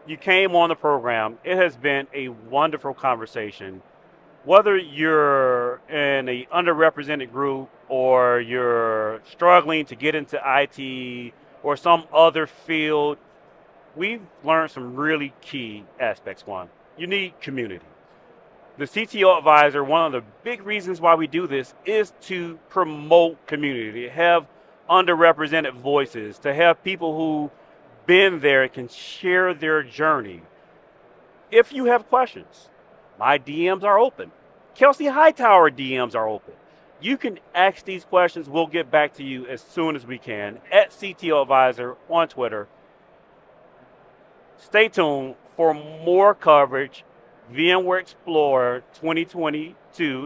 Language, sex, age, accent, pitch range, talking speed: English, male, 40-59, American, 135-180 Hz, 130 wpm